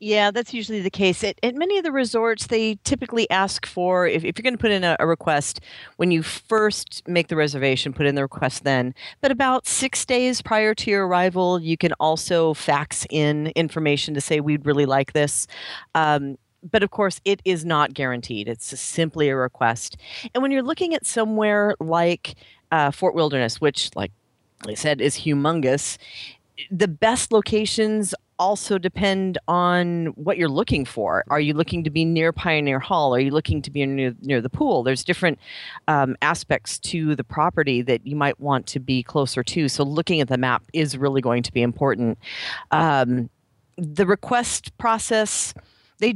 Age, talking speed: 40-59, 185 wpm